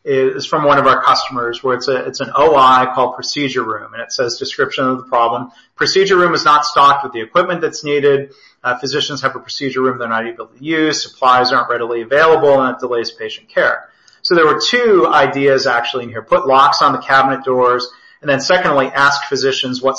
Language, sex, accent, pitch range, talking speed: English, male, American, 130-165 Hz, 215 wpm